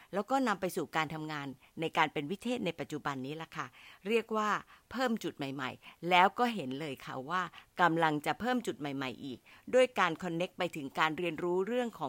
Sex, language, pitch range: female, Thai, 160-230 Hz